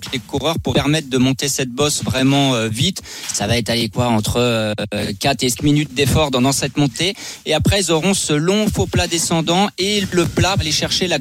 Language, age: French, 40-59